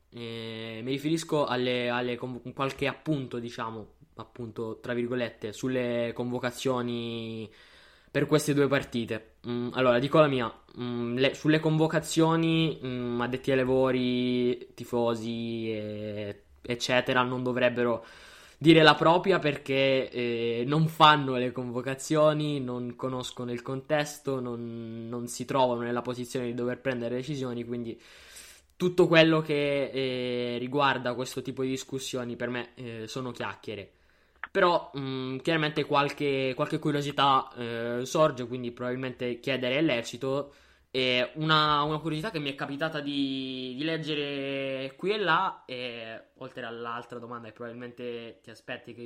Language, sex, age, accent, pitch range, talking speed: Italian, male, 20-39, native, 120-140 Hz, 135 wpm